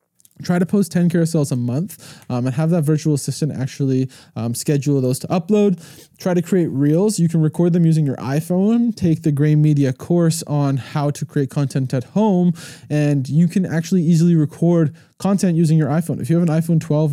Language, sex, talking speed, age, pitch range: English, male, 205 wpm, 20-39, 135-165 Hz